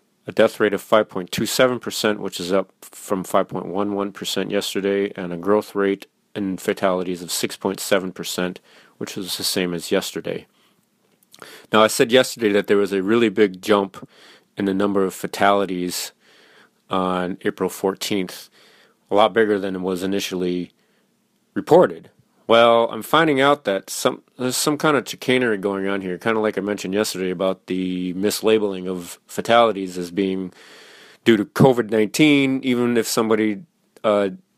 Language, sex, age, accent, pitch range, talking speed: English, male, 30-49, American, 95-120 Hz, 150 wpm